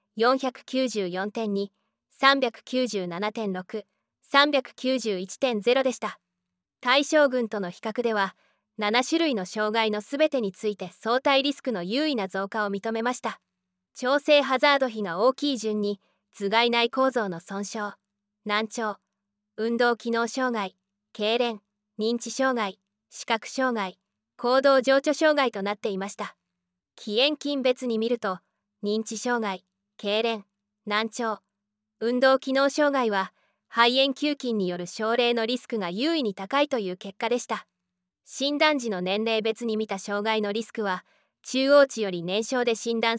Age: 20-39